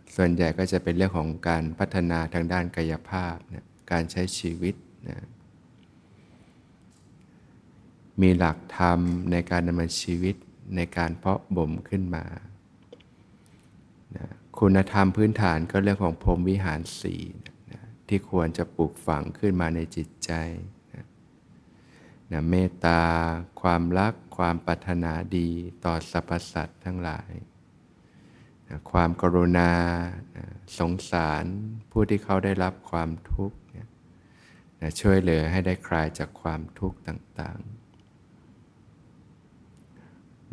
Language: Thai